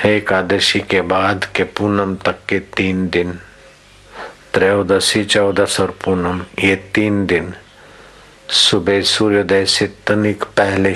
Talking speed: 115 wpm